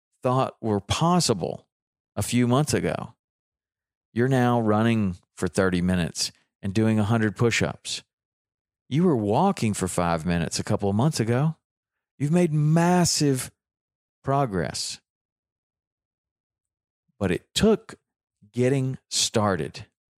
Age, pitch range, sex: 40-59, 95-125 Hz, male